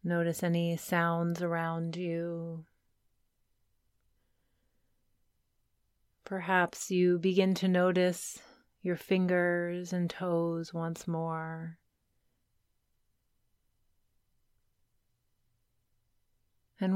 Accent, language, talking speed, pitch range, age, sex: American, English, 60 wpm, 150-185 Hz, 30-49, female